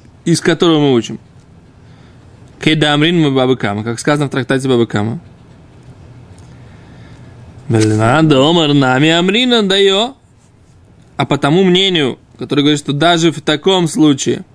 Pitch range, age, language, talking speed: 130-180 Hz, 20-39, Russian, 120 wpm